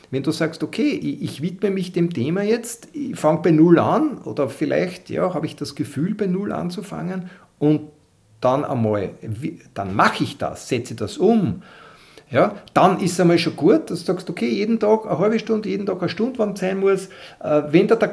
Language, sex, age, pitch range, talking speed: German, male, 50-69, 150-200 Hz, 200 wpm